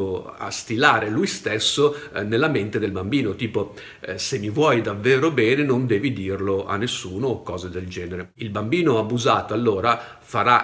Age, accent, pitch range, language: 50-69, native, 105-145 Hz, Italian